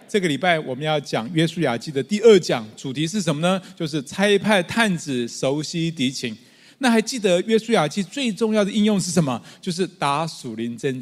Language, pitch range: Chinese, 160-210 Hz